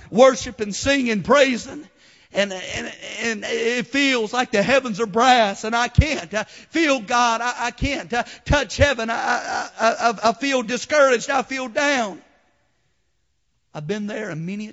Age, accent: 50-69, American